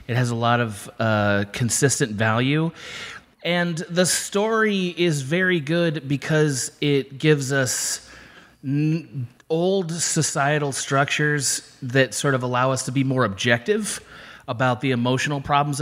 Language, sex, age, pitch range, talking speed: English, male, 30-49, 115-150 Hz, 130 wpm